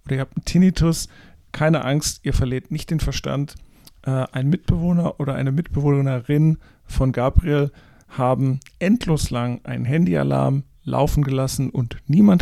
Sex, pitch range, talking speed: male, 125-155 Hz, 135 wpm